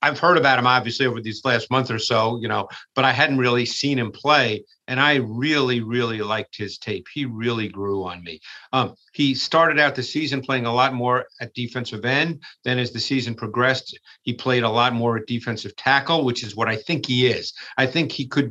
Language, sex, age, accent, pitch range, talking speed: English, male, 50-69, American, 115-140 Hz, 225 wpm